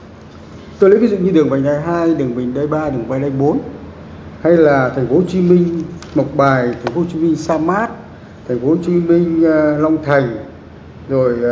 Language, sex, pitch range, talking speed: Vietnamese, male, 135-190 Hz, 215 wpm